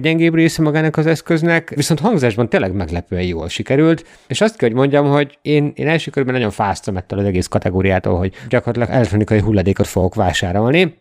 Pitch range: 100-130 Hz